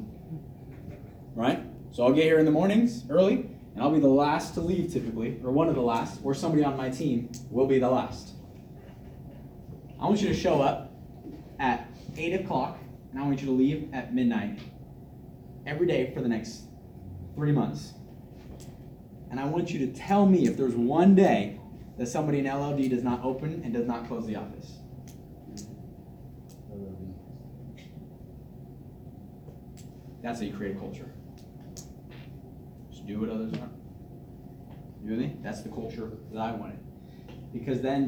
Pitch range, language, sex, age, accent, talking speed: 115-150 Hz, English, male, 20-39, American, 160 wpm